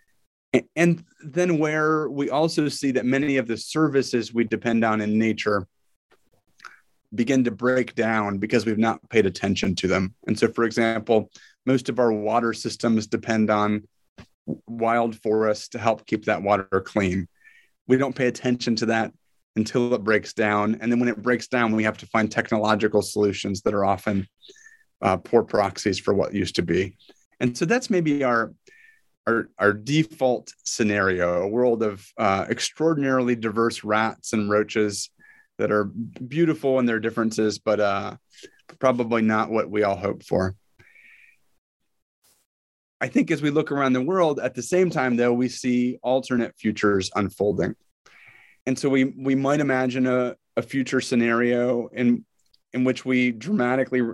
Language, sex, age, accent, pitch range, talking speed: English, male, 30-49, American, 110-130 Hz, 160 wpm